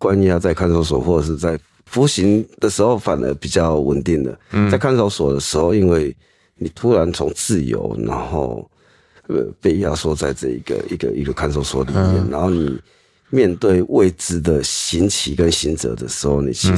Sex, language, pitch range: male, Chinese, 75-95 Hz